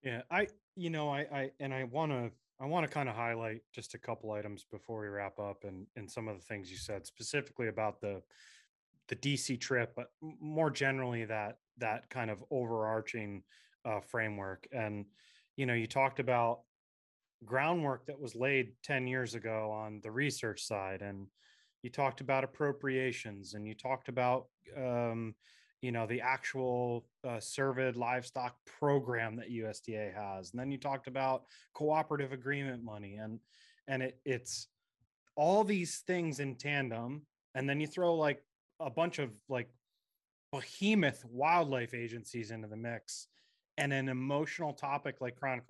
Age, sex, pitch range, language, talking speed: 30-49, male, 115-140 Hz, English, 165 wpm